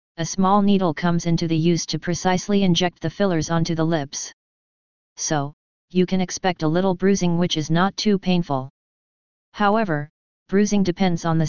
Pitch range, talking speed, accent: 165-195 Hz, 165 wpm, American